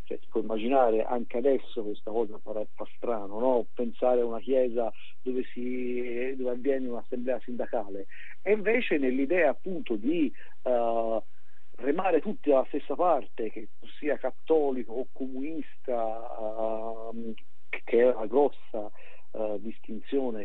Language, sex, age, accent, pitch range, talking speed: Italian, male, 50-69, native, 115-150 Hz, 130 wpm